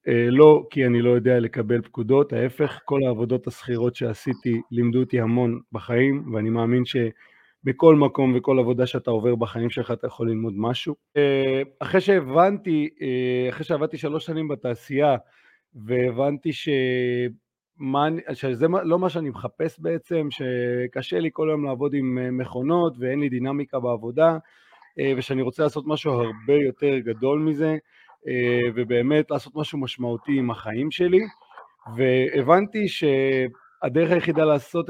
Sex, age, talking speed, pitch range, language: male, 30-49, 130 wpm, 120-150 Hz, Hebrew